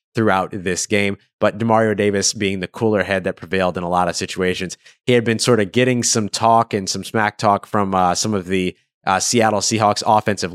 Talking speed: 215 wpm